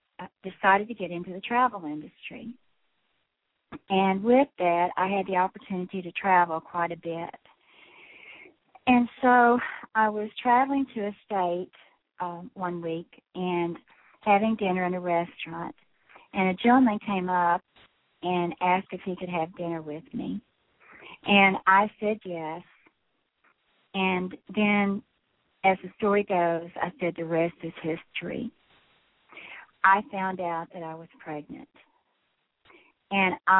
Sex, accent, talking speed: female, American, 130 wpm